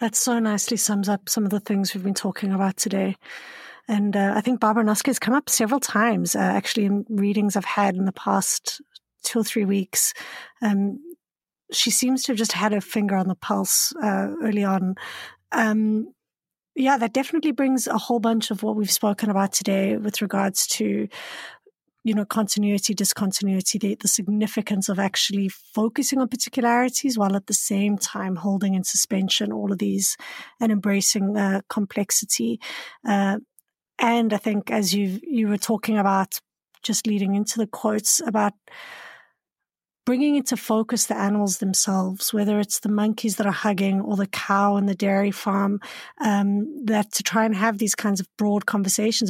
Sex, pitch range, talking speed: female, 200-225 Hz, 175 wpm